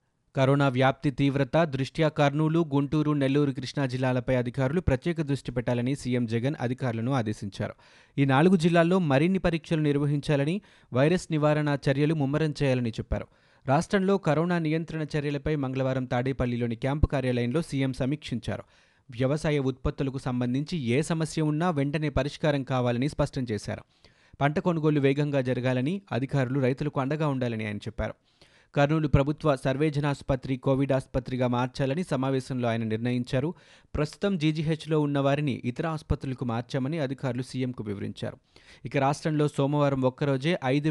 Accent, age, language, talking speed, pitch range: native, 30-49, Telugu, 125 wpm, 125-150 Hz